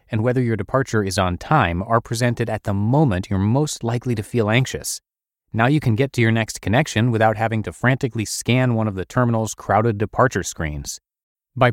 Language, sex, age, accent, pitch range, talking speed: English, male, 30-49, American, 100-135 Hz, 200 wpm